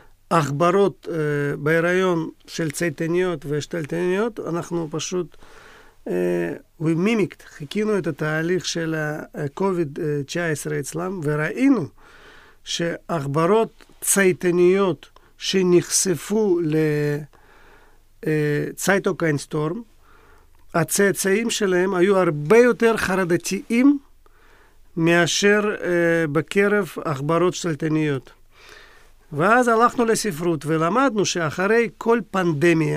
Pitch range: 155-195 Hz